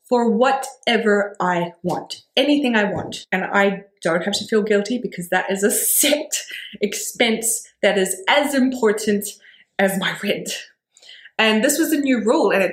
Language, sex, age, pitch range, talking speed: English, female, 20-39, 185-230 Hz, 165 wpm